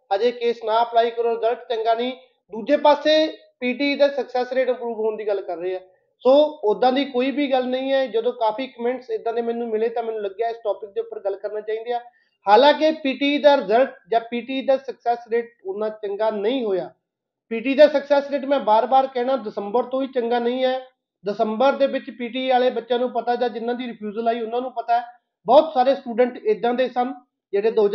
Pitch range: 215-255 Hz